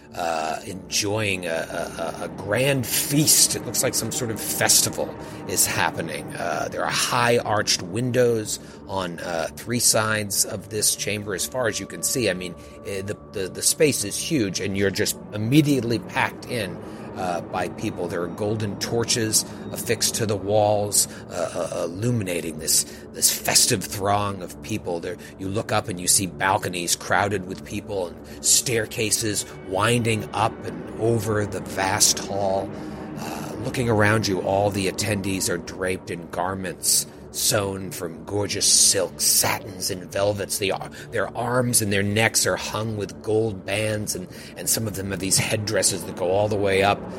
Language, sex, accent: English, male, American